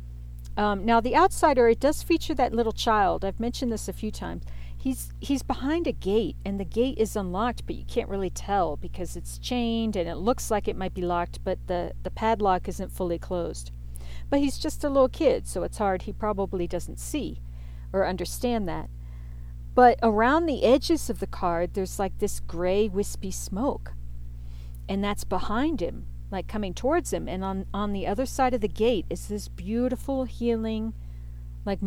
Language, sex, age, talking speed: English, female, 50-69, 190 wpm